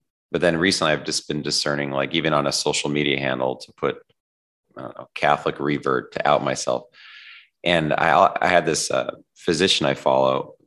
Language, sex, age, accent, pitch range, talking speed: English, male, 30-49, American, 65-75 Hz, 185 wpm